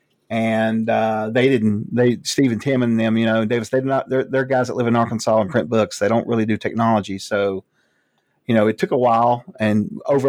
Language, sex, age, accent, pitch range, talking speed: English, male, 40-59, American, 110-130 Hz, 220 wpm